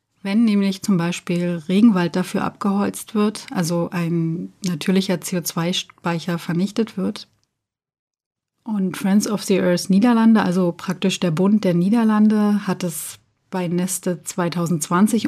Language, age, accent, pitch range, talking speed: German, 30-49, German, 170-210 Hz, 120 wpm